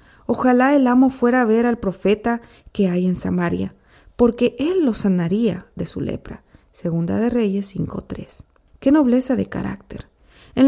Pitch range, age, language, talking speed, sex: 190-260 Hz, 40-59, Spanish, 155 wpm, female